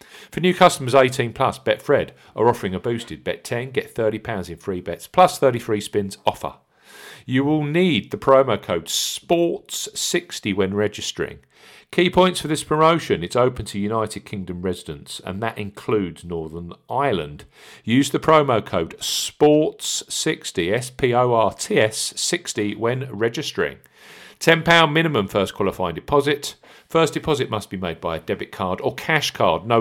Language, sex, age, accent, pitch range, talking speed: English, male, 50-69, British, 100-145 Hz, 145 wpm